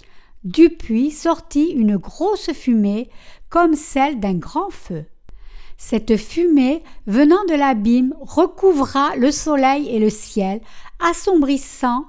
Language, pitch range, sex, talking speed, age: French, 220-320 Hz, female, 115 wpm, 60-79